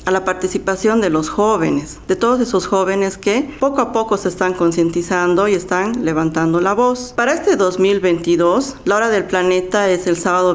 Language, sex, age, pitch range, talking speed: Spanish, female, 40-59, 180-230 Hz, 180 wpm